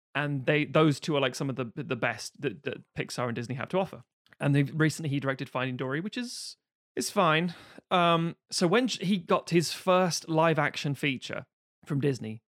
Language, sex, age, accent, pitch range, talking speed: English, male, 30-49, British, 130-160 Hz, 200 wpm